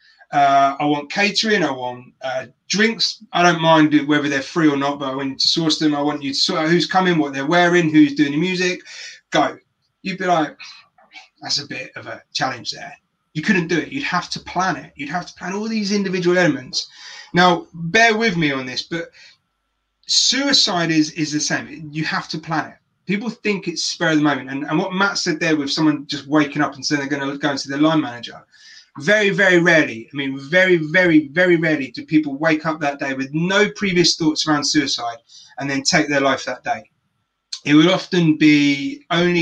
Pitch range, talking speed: 145-180 Hz, 215 wpm